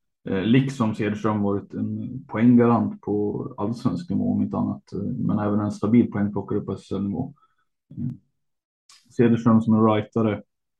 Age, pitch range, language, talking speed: 20-39, 105-120 Hz, Swedish, 135 wpm